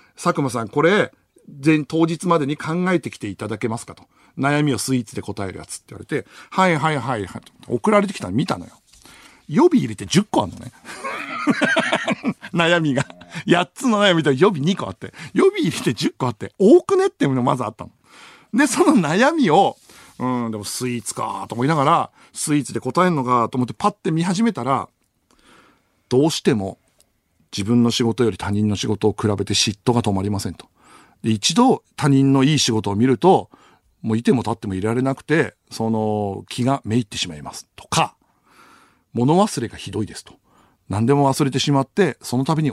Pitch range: 115-175 Hz